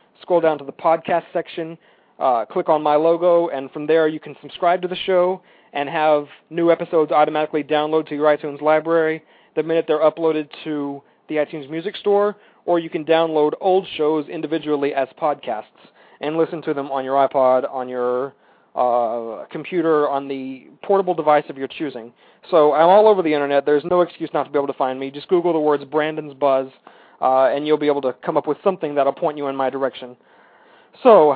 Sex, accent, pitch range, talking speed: male, American, 145-175 Hz, 200 wpm